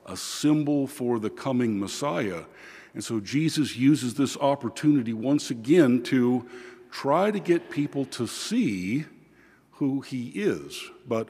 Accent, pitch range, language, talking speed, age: American, 105-145 Hz, English, 135 wpm, 50-69